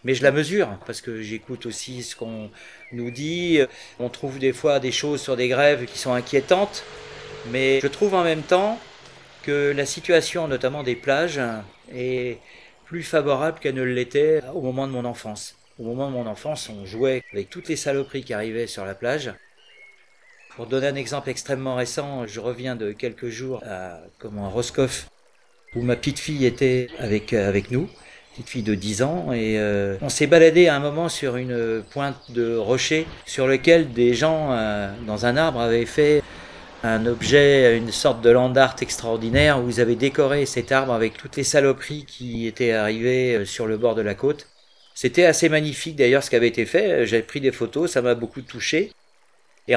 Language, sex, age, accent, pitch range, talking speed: French, male, 40-59, French, 120-145 Hz, 190 wpm